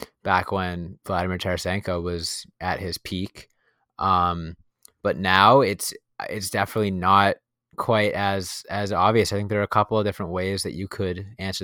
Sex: male